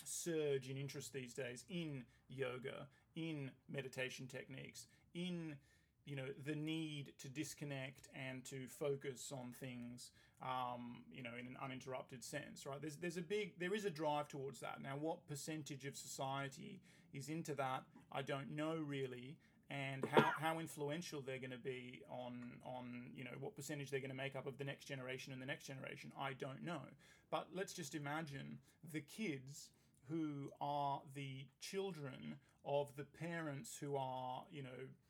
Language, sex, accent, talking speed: English, male, Australian, 170 wpm